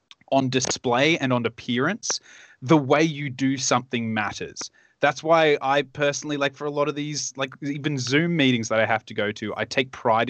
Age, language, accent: 20-39, English, Australian